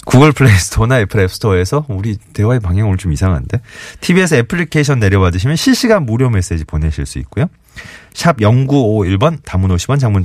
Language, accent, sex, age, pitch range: Korean, native, male, 30-49, 90-130 Hz